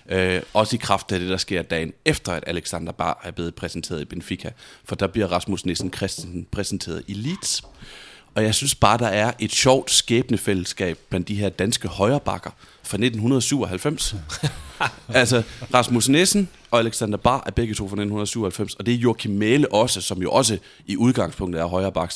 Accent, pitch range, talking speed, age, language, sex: native, 95-115 Hz, 180 wpm, 30-49, Danish, male